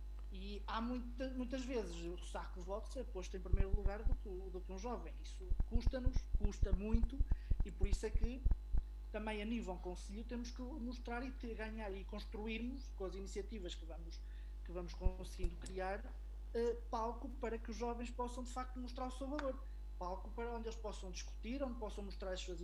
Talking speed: 195 wpm